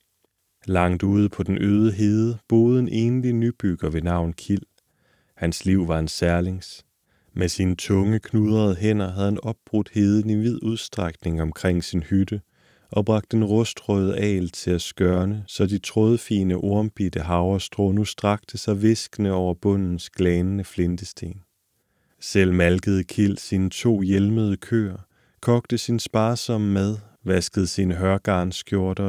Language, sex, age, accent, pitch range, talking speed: Danish, male, 30-49, native, 90-110 Hz, 140 wpm